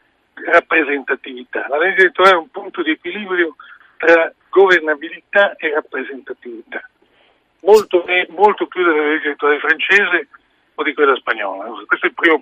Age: 50-69